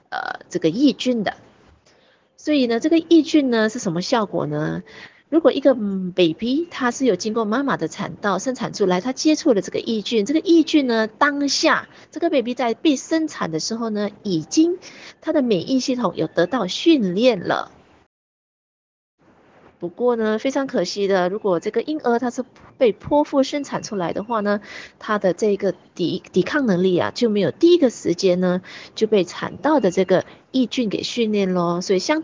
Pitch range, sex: 185-275 Hz, female